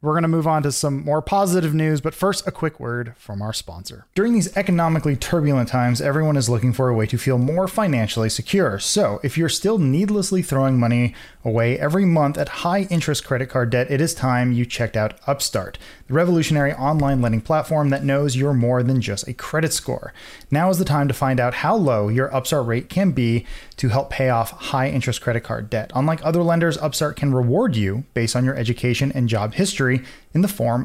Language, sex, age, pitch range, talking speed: English, male, 30-49, 120-155 Hz, 215 wpm